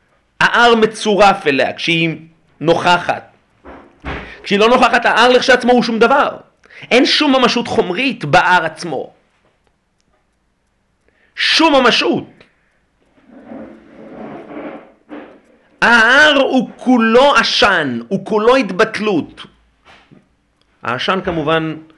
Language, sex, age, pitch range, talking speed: Hebrew, male, 40-59, 150-230 Hz, 80 wpm